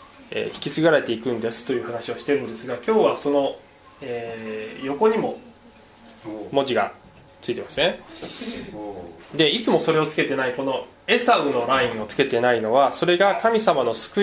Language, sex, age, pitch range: Japanese, male, 20-39, 120-175 Hz